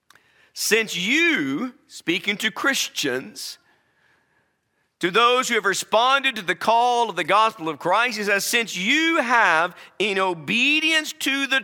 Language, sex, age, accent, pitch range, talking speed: English, male, 50-69, American, 175-265 Hz, 140 wpm